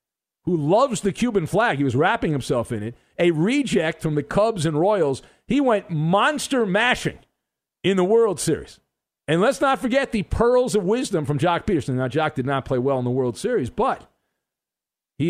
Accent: American